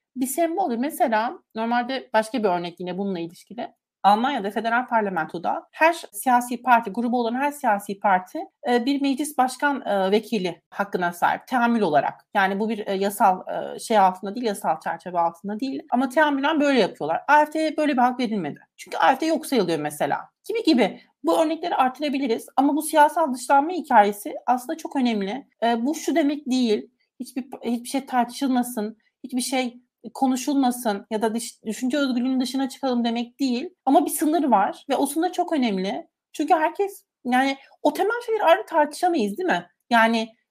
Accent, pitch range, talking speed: native, 220-300 Hz, 160 wpm